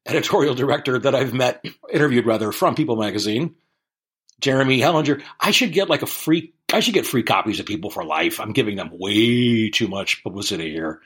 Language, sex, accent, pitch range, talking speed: English, male, American, 115-160 Hz, 190 wpm